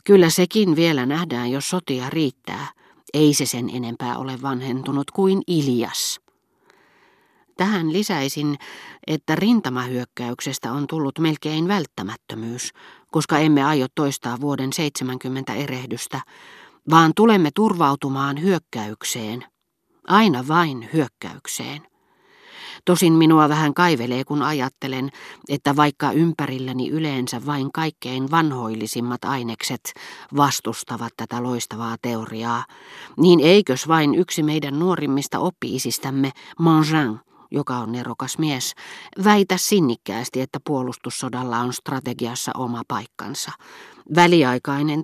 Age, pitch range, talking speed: 40-59, 125-160 Hz, 100 wpm